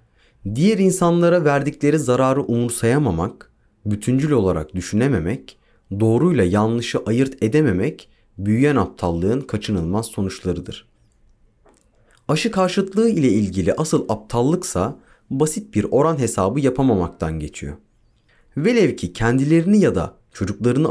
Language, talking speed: Turkish, 95 wpm